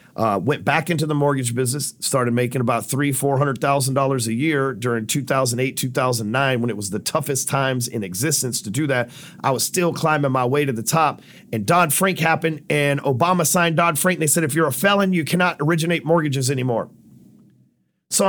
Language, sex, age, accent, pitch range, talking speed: English, male, 40-59, American, 145-205 Hz, 205 wpm